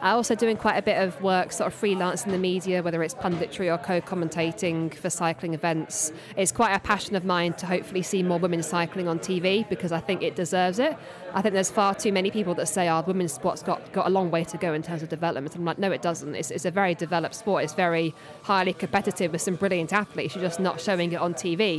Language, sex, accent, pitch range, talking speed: English, female, British, 170-205 Hz, 250 wpm